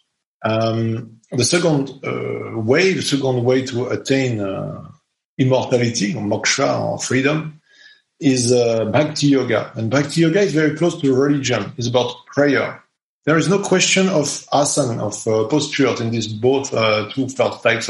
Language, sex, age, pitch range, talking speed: English, male, 40-59, 115-145 Hz, 155 wpm